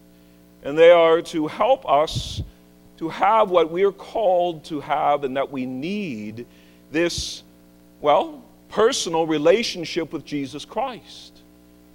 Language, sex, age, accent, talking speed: English, male, 50-69, American, 125 wpm